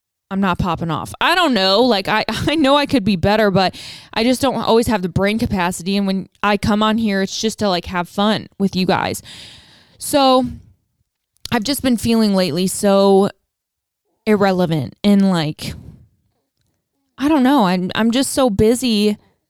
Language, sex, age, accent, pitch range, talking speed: English, female, 20-39, American, 185-240 Hz, 175 wpm